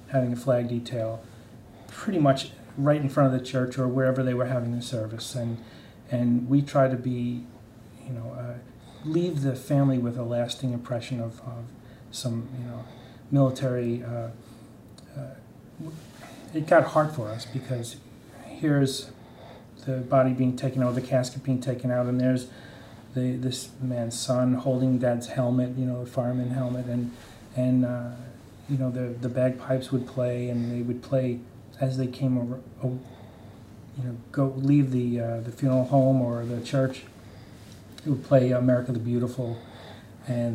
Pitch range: 120-130 Hz